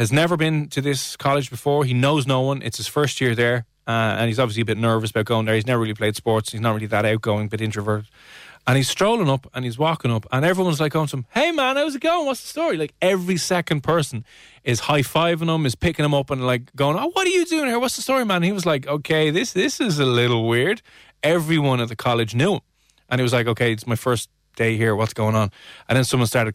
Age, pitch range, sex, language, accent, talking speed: 20-39, 110-135 Hz, male, English, Irish, 270 wpm